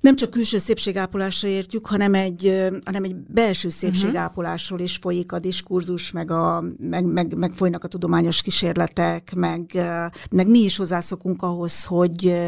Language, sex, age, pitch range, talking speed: Hungarian, female, 60-79, 180-210 Hz, 150 wpm